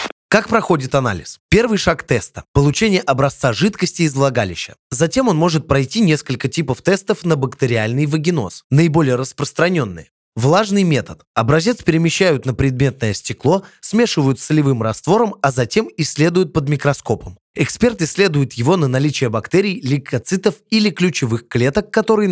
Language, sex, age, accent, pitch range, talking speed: Russian, male, 20-39, native, 130-180 Hz, 135 wpm